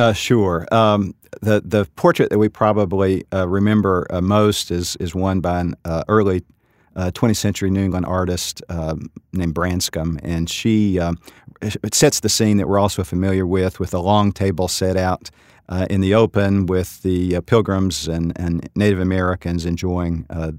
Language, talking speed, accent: English, 180 wpm, American